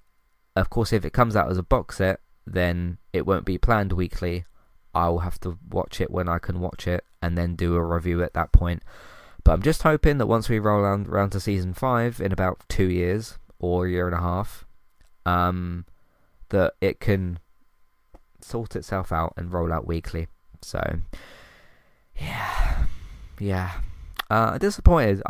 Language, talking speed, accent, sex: English, 170 wpm, British, male